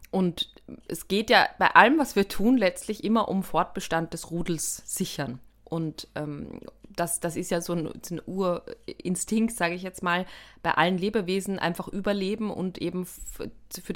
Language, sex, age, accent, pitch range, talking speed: German, female, 20-39, German, 180-215 Hz, 170 wpm